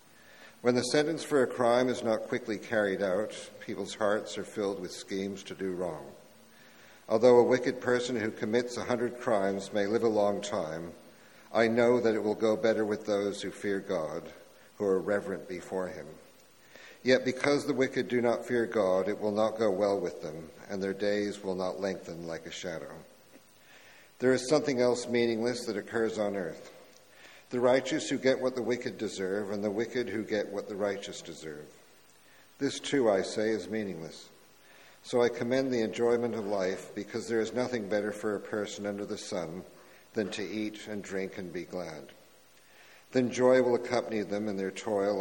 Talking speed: 185 wpm